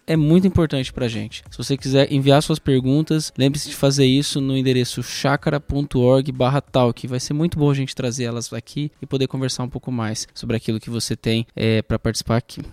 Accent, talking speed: Brazilian, 205 wpm